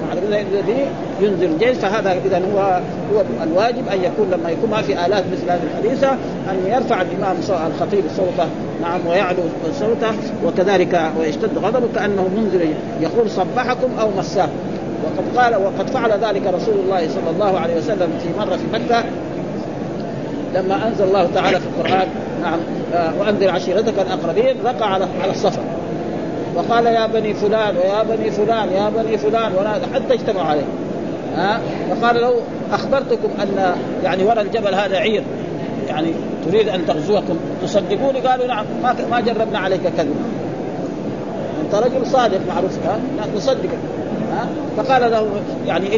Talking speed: 140 wpm